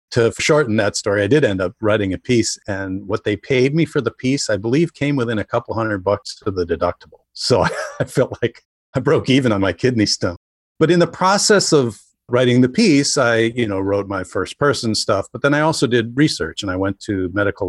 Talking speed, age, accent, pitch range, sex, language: 225 wpm, 50-69, American, 95-130 Hz, male, English